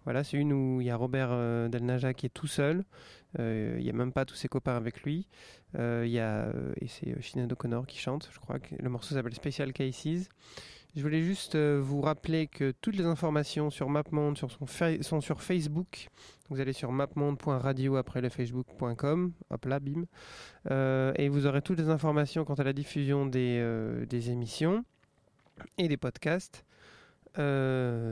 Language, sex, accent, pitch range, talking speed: French, male, French, 125-155 Hz, 190 wpm